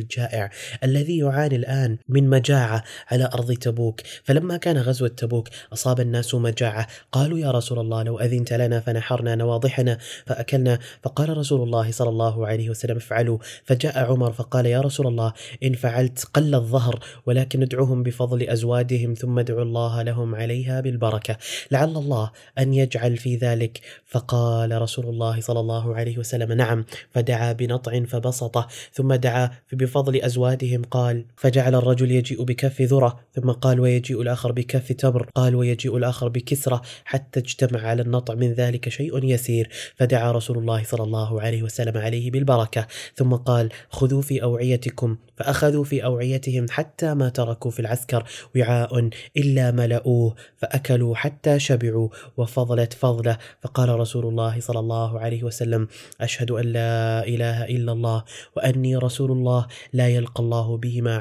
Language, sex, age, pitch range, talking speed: Arabic, male, 20-39, 115-130 Hz, 145 wpm